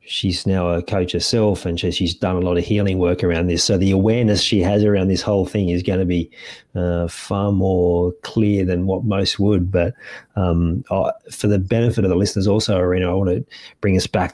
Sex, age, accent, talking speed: male, 30-49, Australian, 220 wpm